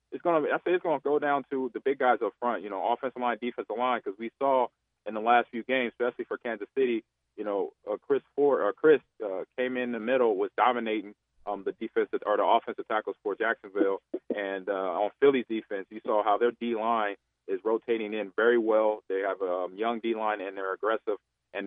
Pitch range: 110-155 Hz